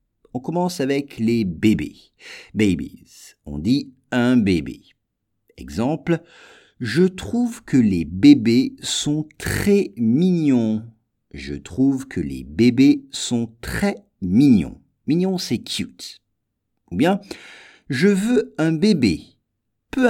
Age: 50-69